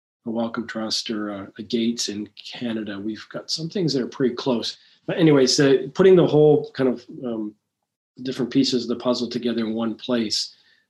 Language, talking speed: English, 185 wpm